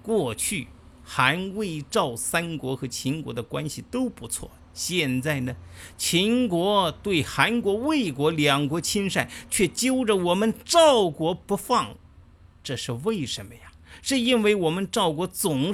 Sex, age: male, 50-69